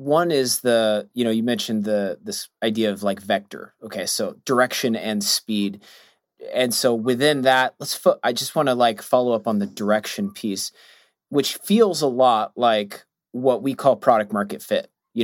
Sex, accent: male, American